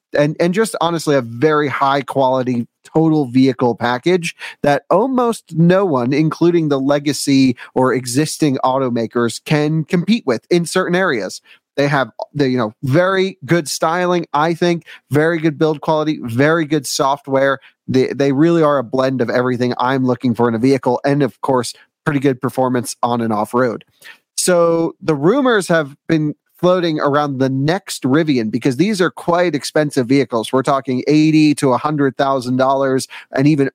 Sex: male